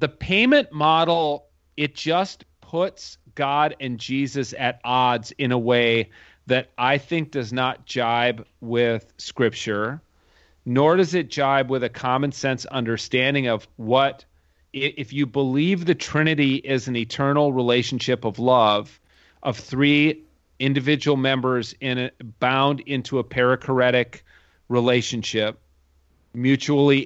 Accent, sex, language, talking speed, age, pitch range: American, male, English, 120 wpm, 40-59, 120-145 Hz